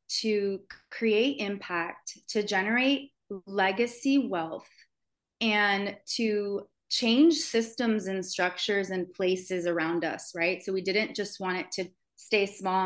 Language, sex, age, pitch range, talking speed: English, female, 20-39, 180-210 Hz, 125 wpm